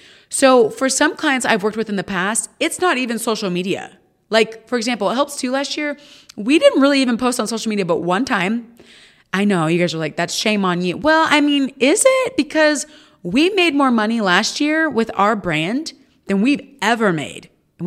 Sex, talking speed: female, 215 wpm